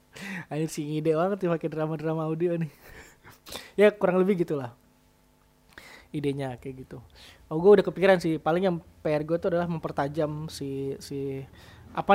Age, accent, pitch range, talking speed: 20-39, native, 145-175 Hz, 150 wpm